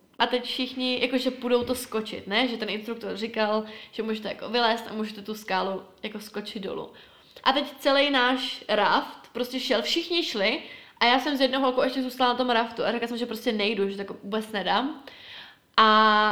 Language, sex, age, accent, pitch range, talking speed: Czech, female, 20-39, native, 220-260 Hz, 200 wpm